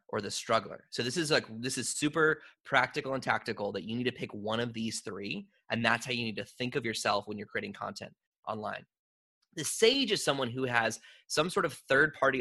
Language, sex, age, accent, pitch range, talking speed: English, male, 20-39, American, 110-150 Hz, 220 wpm